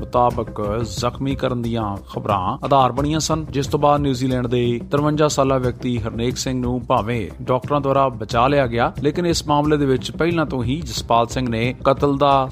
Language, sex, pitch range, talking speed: Punjabi, male, 115-140 Hz, 180 wpm